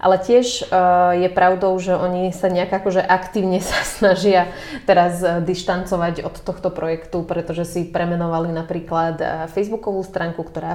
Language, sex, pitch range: Slovak, female, 165-185 Hz